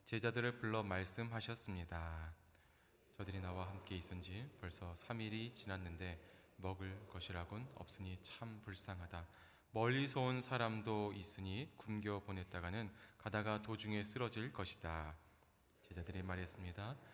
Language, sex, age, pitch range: Korean, male, 20-39, 90-110 Hz